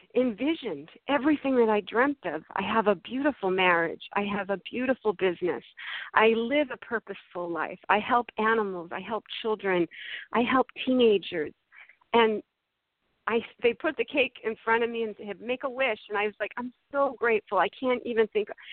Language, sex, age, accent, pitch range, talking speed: English, female, 40-59, American, 195-245 Hz, 180 wpm